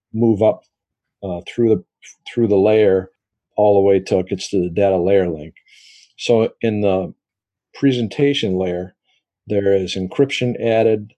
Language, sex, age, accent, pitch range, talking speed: English, male, 50-69, American, 95-105 Hz, 150 wpm